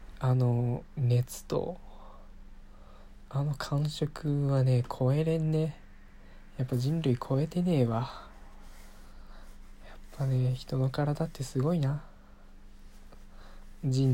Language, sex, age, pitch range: Japanese, male, 20-39, 105-140 Hz